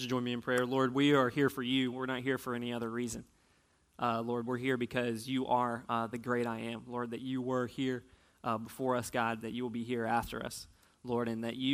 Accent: American